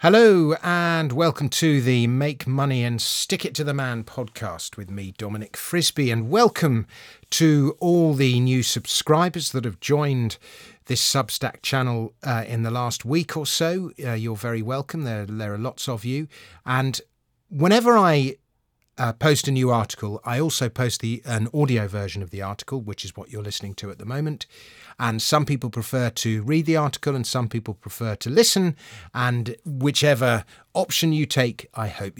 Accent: British